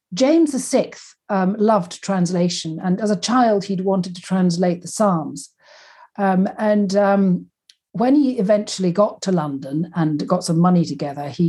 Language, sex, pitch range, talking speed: English, female, 160-200 Hz, 155 wpm